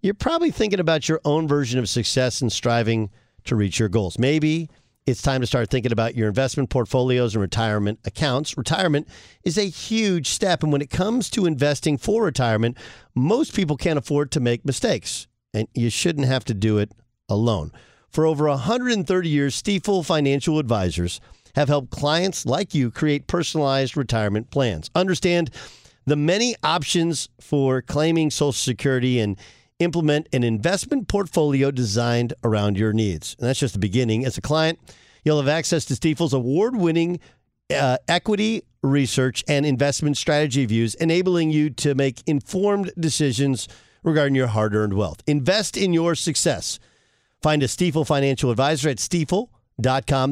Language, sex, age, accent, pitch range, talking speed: English, male, 50-69, American, 120-165 Hz, 155 wpm